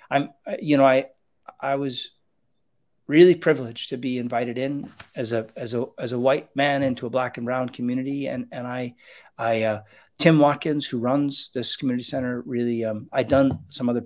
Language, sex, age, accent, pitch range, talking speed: English, male, 40-59, American, 120-140 Hz, 190 wpm